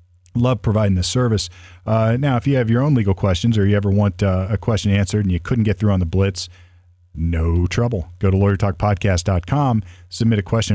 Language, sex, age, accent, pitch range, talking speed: English, male, 40-59, American, 90-105 Hz, 210 wpm